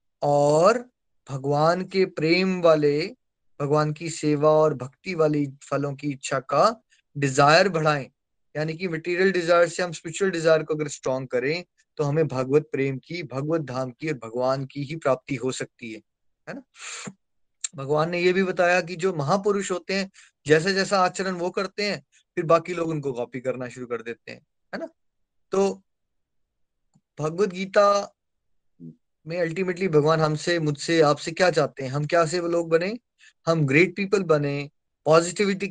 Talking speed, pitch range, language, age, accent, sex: 160 wpm, 140-185 Hz, Hindi, 20-39, native, male